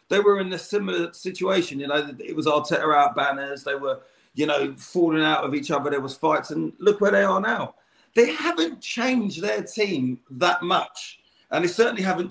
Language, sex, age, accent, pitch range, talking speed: English, male, 40-59, British, 150-210 Hz, 205 wpm